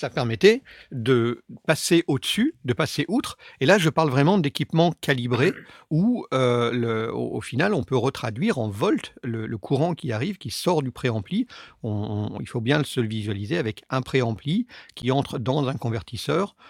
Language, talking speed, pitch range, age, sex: French, 170 wpm, 120-165 Hz, 50-69, male